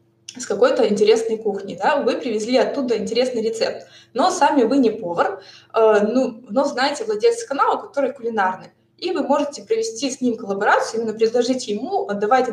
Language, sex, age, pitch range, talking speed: Russian, female, 20-39, 210-280 Hz, 170 wpm